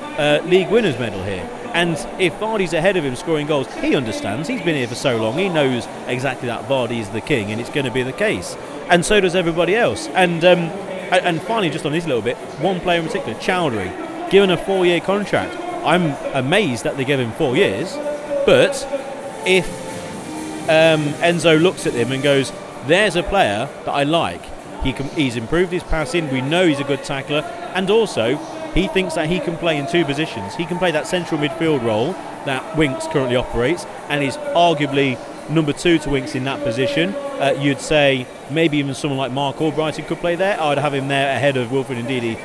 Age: 40-59